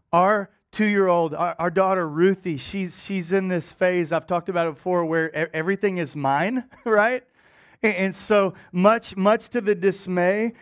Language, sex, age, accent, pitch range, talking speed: English, male, 40-59, American, 180-225 Hz, 165 wpm